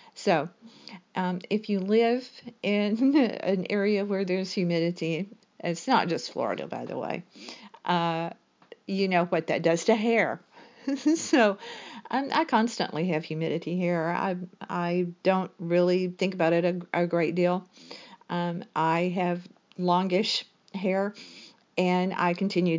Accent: American